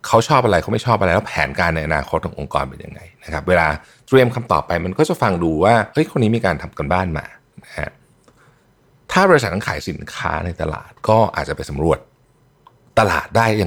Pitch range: 85-135 Hz